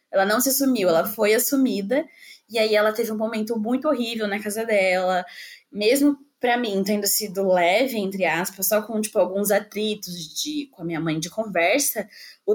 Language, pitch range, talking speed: Portuguese, 195-255 Hz, 180 wpm